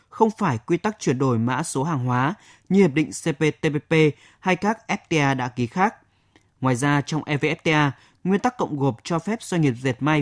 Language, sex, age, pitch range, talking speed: Vietnamese, male, 20-39, 140-205 Hz, 200 wpm